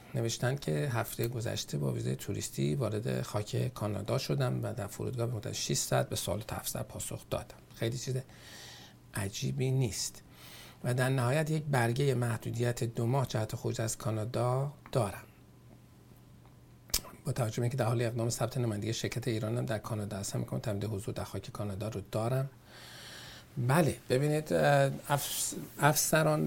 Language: Persian